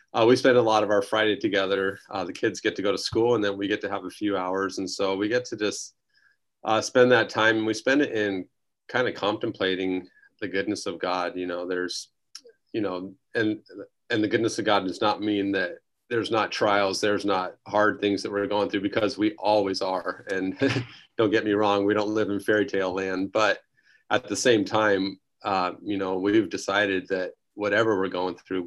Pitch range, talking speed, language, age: 95-110 Hz, 220 wpm, English, 30-49